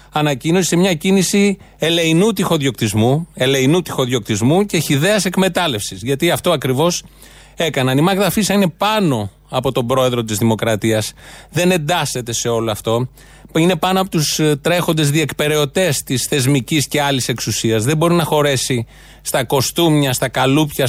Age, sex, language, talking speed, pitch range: 30-49, male, Greek, 130 wpm, 130-160 Hz